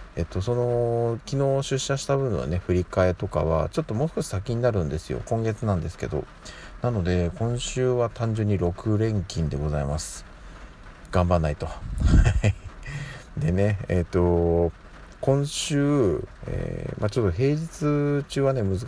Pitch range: 85-115 Hz